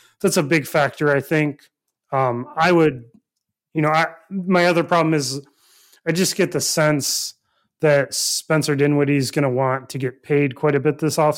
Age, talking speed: 30-49, 190 wpm